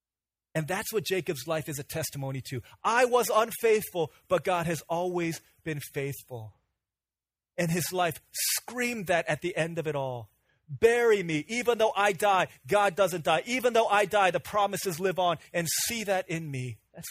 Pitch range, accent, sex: 145-195 Hz, American, male